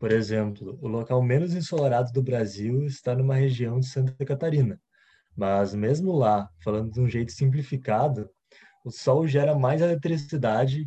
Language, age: Portuguese, 20-39